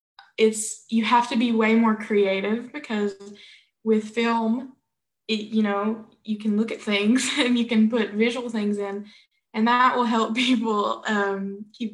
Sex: female